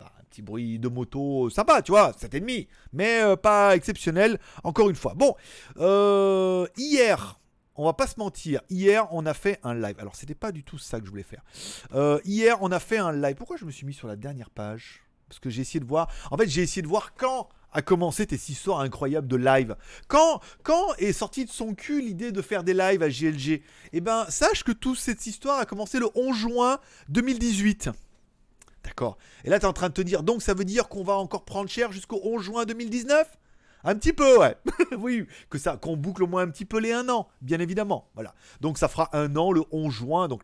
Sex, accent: male, French